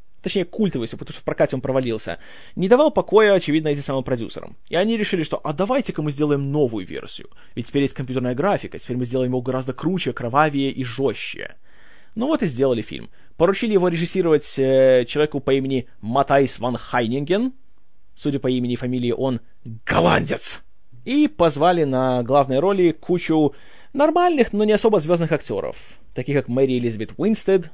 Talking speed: 170 wpm